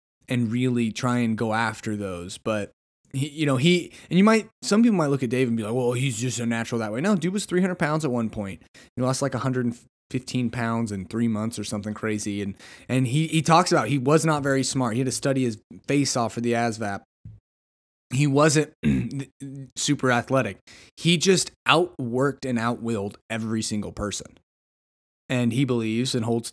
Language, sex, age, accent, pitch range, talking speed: English, male, 20-39, American, 110-140 Hz, 200 wpm